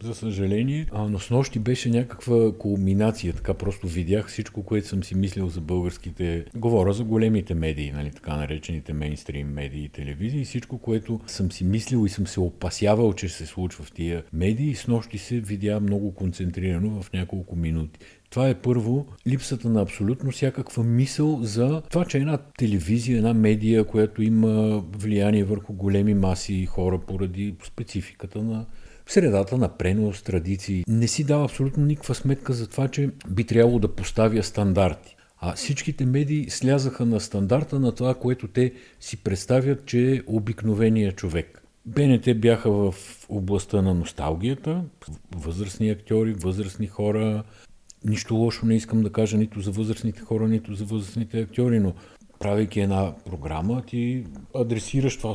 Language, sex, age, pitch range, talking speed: Bulgarian, male, 50-69, 95-120 Hz, 160 wpm